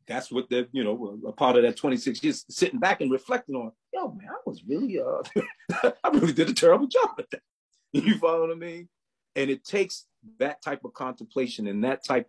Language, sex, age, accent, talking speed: English, male, 40-59, American, 220 wpm